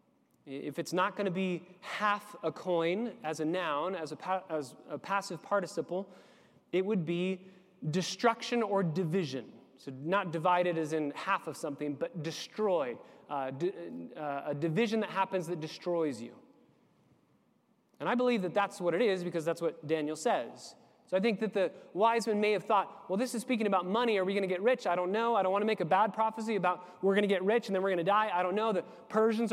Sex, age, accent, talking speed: male, 30-49, American, 220 wpm